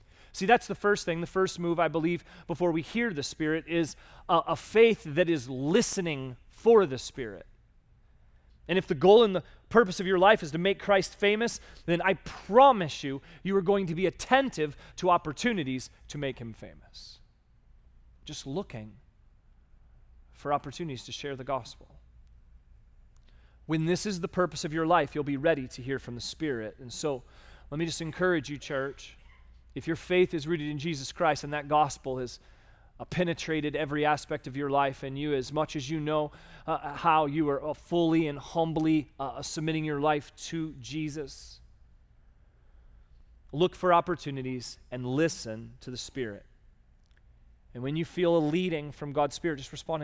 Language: English